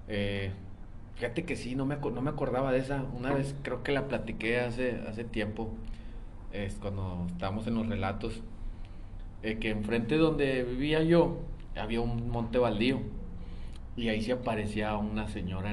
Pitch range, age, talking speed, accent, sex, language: 100-125 Hz, 30-49, 160 wpm, Mexican, male, Spanish